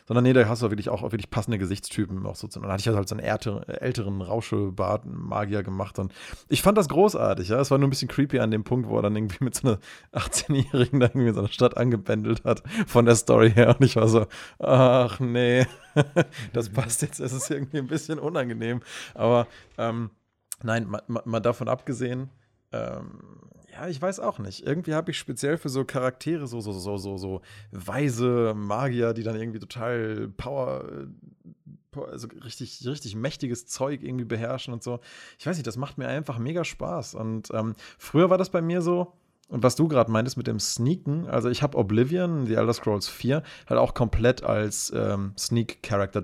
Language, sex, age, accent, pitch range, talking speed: German, male, 30-49, German, 110-135 Hz, 200 wpm